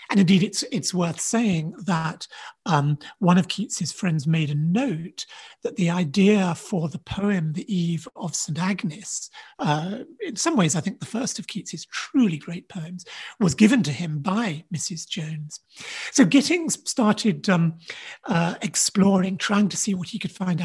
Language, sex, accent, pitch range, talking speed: English, male, British, 170-215 Hz, 170 wpm